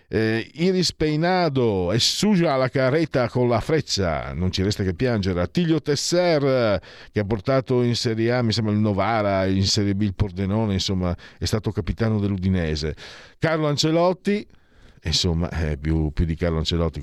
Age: 50-69